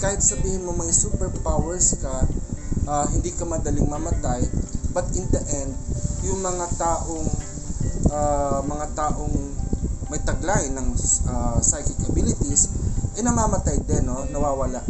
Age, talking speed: 20-39, 135 wpm